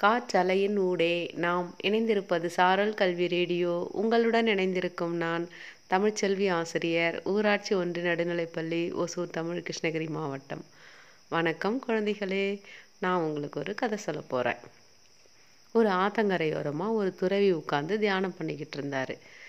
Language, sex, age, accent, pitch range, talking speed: Tamil, female, 30-49, native, 165-205 Hz, 110 wpm